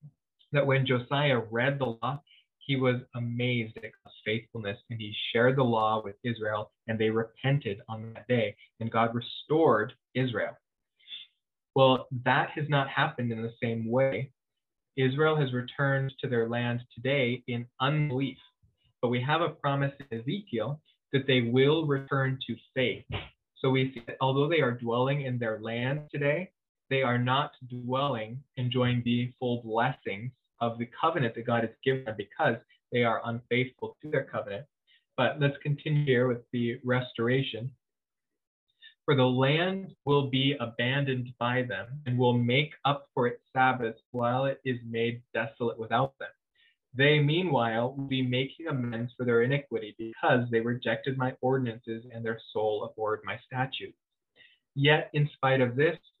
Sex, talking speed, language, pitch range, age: male, 160 wpm, English, 115-140 Hz, 20-39